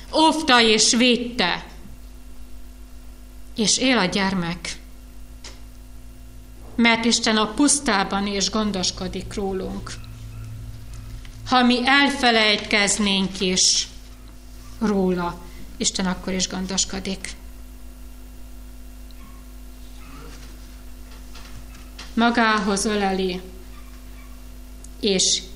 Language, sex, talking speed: Hungarian, female, 60 wpm